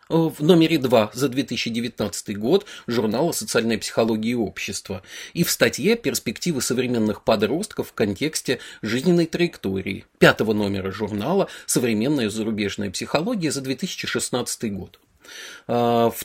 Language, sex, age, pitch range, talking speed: Russian, male, 30-49, 115-170 Hz, 115 wpm